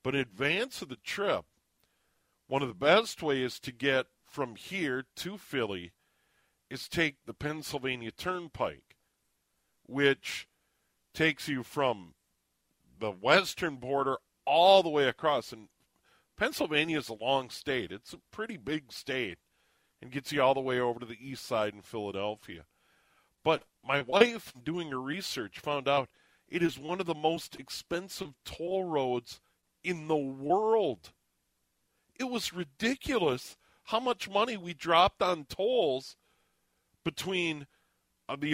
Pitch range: 125-175 Hz